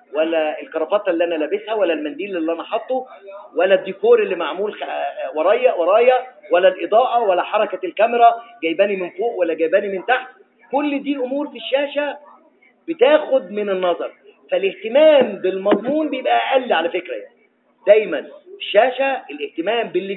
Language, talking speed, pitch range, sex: English, 135 wpm, 205-305 Hz, male